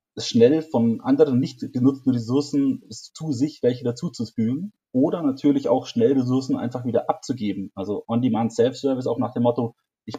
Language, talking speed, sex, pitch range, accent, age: German, 155 wpm, male, 120-155 Hz, German, 30-49